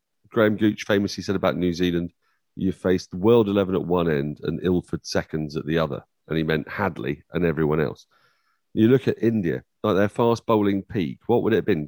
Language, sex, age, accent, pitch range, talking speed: English, male, 40-59, British, 85-120 Hz, 205 wpm